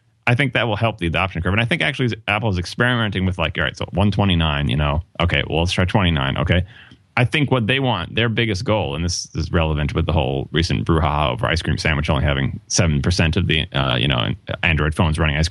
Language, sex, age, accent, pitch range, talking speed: English, male, 30-49, American, 85-115 Hz, 240 wpm